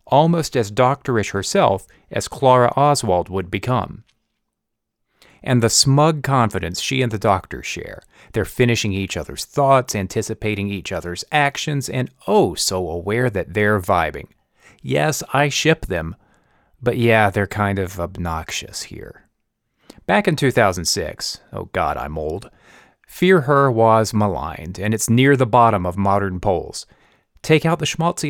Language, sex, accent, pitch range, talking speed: English, male, American, 105-140 Hz, 145 wpm